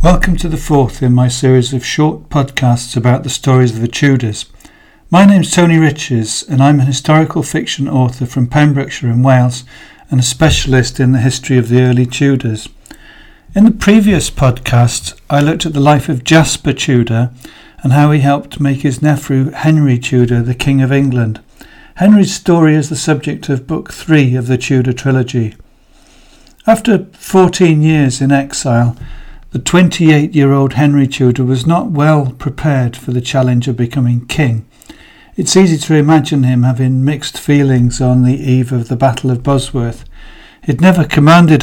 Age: 60-79